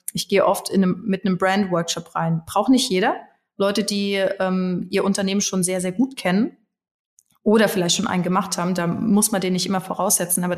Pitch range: 180-205 Hz